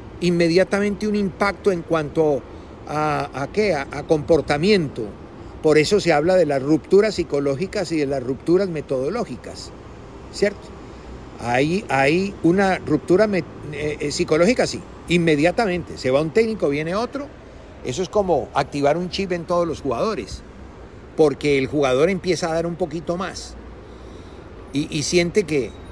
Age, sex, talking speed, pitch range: 50-69, male, 140 wpm, 135-180 Hz